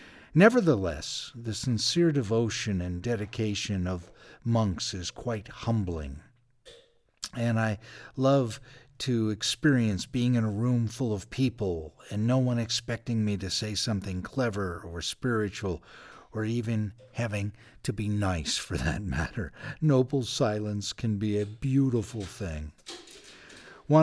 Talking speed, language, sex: 125 wpm, English, male